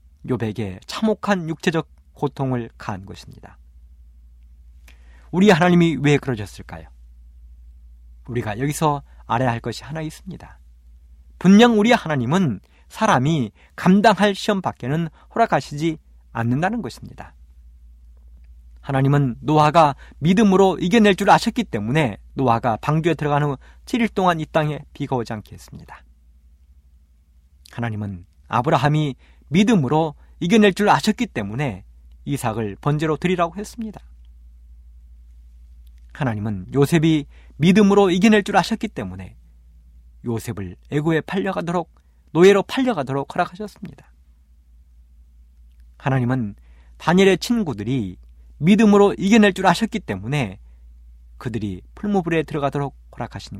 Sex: male